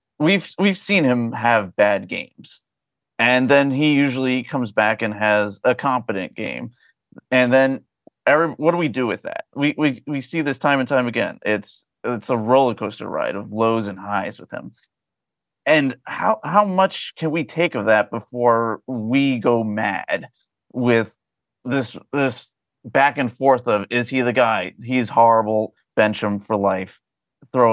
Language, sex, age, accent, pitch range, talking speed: English, male, 30-49, American, 105-140 Hz, 170 wpm